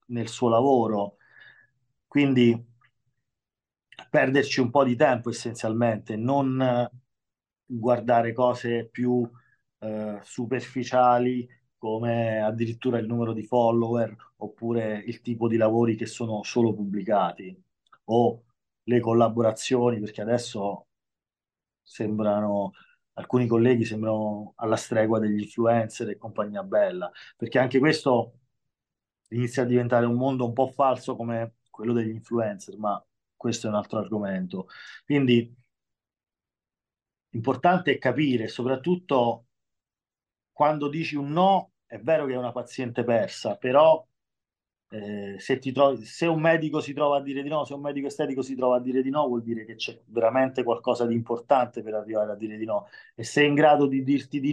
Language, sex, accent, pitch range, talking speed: Italian, male, native, 115-130 Hz, 145 wpm